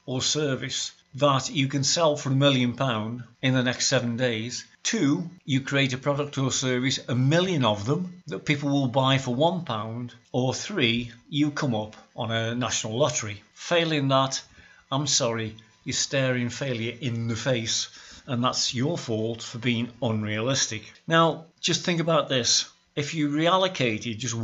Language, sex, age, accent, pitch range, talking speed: English, male, 50-69, British, 120-145 Hz, 165 wpm